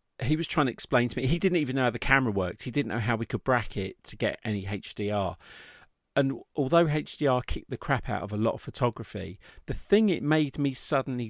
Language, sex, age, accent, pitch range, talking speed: English, male, 40-59, British, 105-135 Hz, 235 wpm